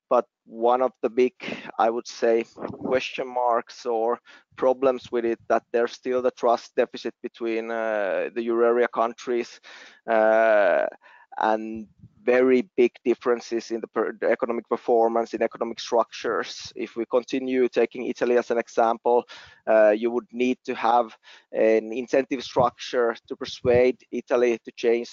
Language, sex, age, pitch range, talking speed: English, male, 20-39, 115-125 Hz, 145 wpm